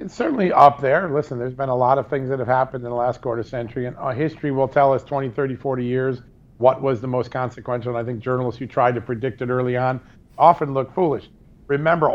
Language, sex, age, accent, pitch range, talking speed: English, male, 50-69, American, 125-145 Hz, 235 wpm